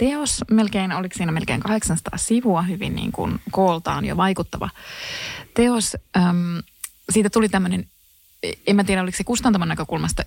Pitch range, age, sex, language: 170-210 Hz, 20-39, female, Finnish